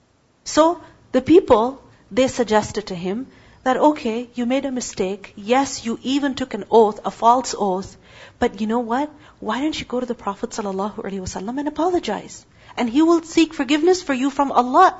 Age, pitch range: 40-59, 215-295 Hz